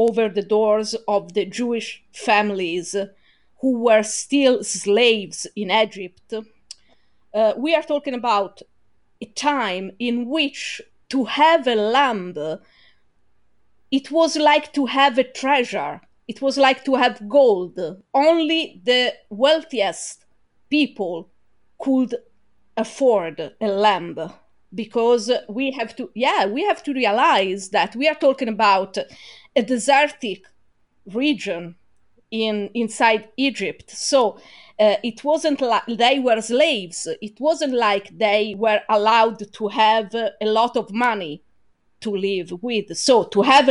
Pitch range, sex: 205-270 Hz, female